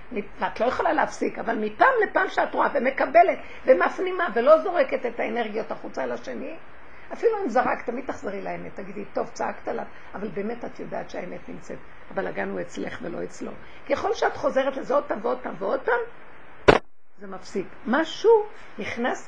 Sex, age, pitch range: female, 50-69, 220-325 Hz